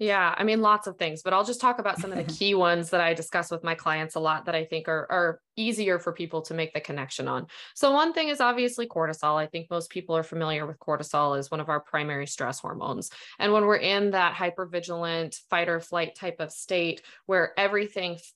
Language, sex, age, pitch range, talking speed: English, female, 20-39, 160-200 Hz, 235 wpm